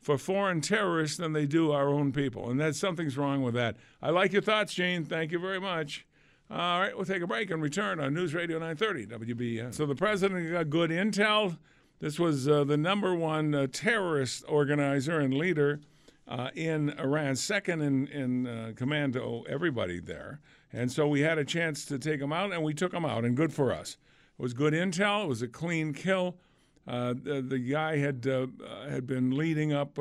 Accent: American